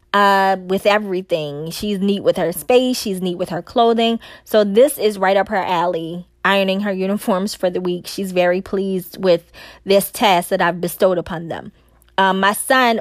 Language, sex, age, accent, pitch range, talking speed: English, female, 20-39, American, 185-230 Hz, 180 wpm